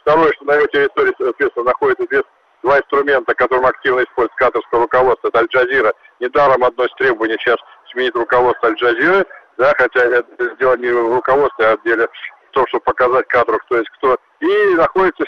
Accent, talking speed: native, 175 wpm